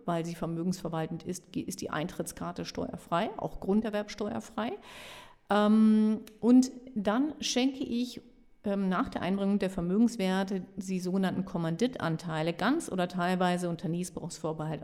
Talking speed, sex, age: 110 wpm, female, 50-69